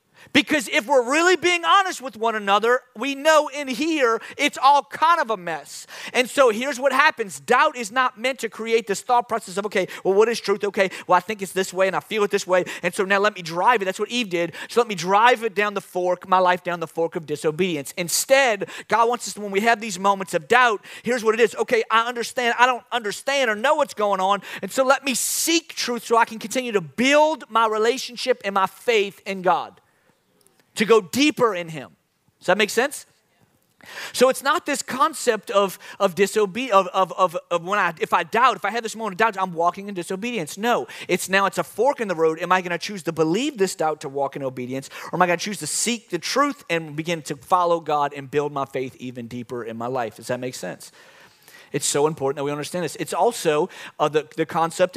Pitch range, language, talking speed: 170-240 Hz, English, 240 wpm